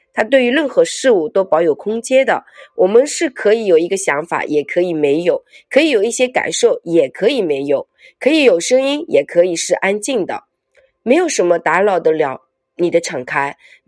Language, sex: Chinese, female